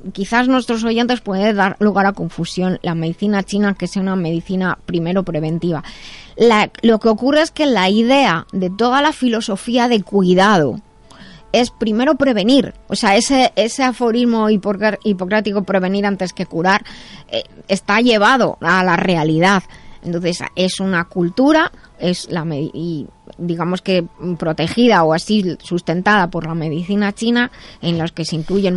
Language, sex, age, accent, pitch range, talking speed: Spanish, female, 20-39, Spanish, 180-235 Hz, 150 wpm